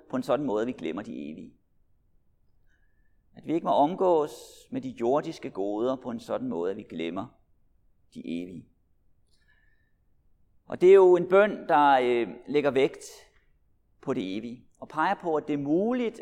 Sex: male